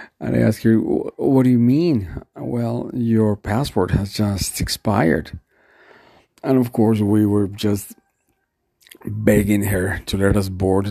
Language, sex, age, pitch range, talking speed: English, male, 50-69, 95-115 Hz, 145 wpm